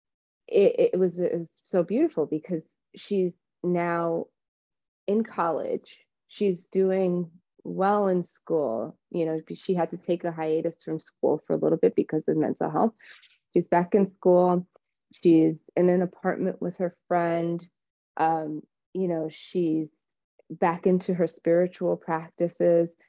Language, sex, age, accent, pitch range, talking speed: English, female, 30-49, American, 160-190 Hz, 145 wpm